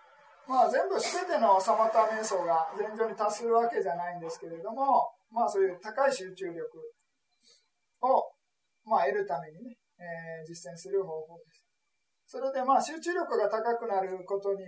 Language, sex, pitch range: Japanese, male, 185-280 Hz